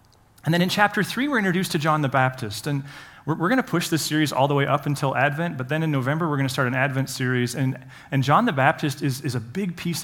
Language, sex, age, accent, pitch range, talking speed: English, male, 30-49, American, 125-150 Hz, 275 wpm